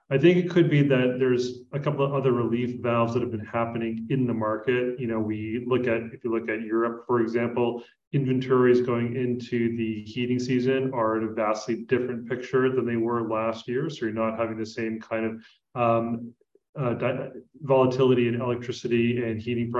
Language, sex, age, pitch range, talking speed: English, male, 30-49, 115-130 Hz, 190 wpm